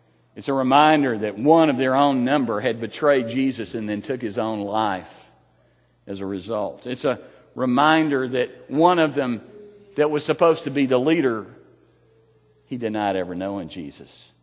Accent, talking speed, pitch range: American, 175 wpm, 95-150 Hz